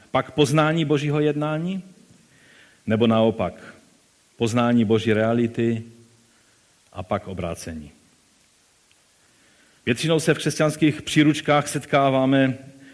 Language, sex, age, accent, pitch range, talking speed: Czech, male, 40-59, native, 110-140 Hz, 85 wpm